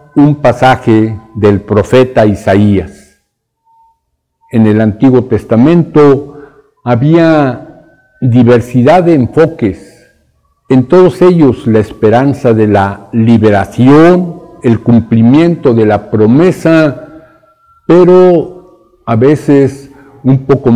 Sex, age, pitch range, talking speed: male, 60-79, 115-155 Hz, 90 wpm